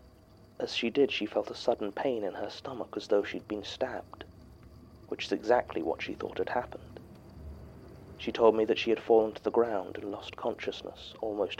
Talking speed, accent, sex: 195 wpm, British, male